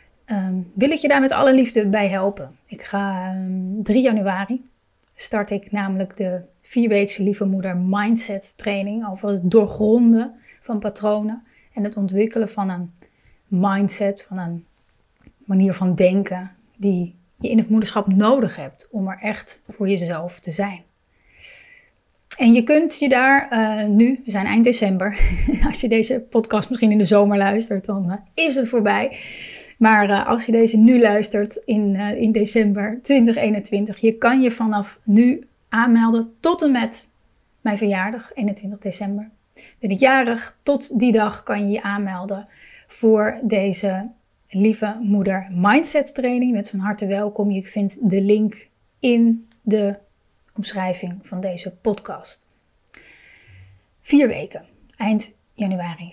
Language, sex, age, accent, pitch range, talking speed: Dutch, female, 30-49, Dutch, 195-230 Hz, 150 wpm